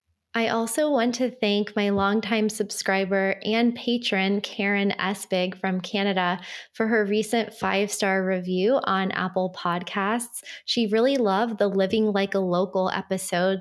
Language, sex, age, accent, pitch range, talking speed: English, female, 20-39, American, 185-215 Hz, 135 wpm